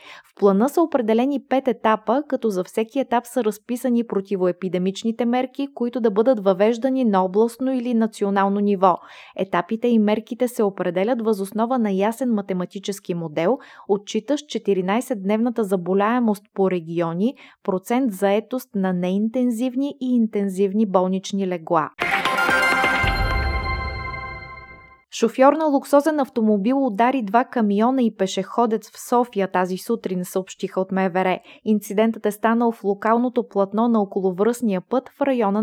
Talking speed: 125 wpm